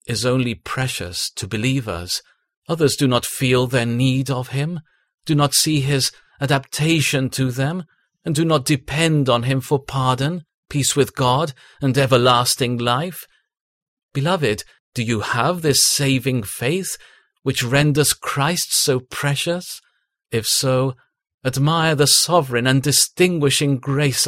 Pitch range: 120-145 Hz